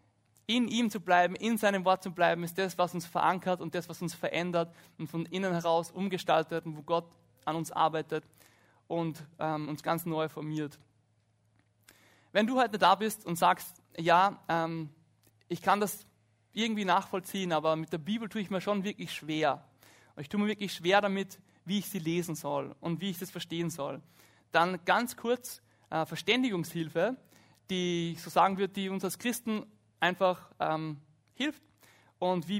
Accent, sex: German, male